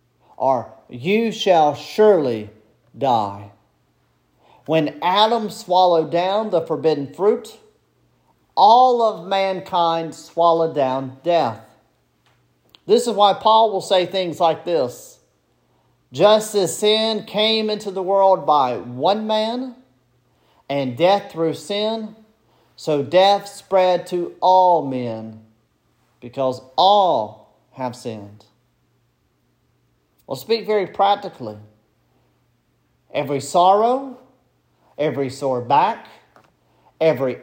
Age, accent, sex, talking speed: 40-59, American, male, 100 wpm